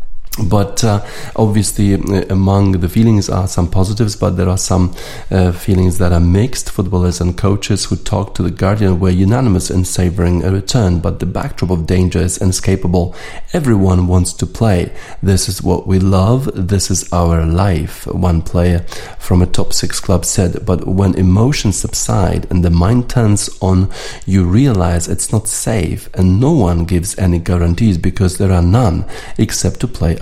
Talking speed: 170 wpm